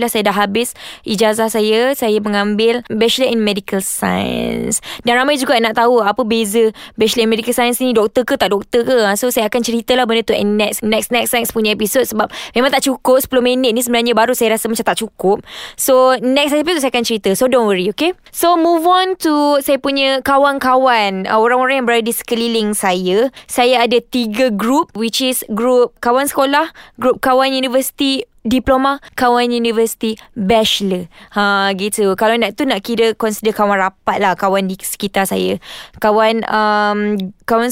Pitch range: 210-255 Hz